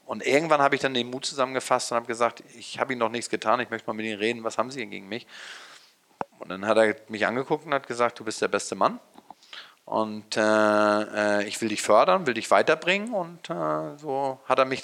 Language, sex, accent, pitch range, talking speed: German, male, German, 105-135 Hz, 235 wpm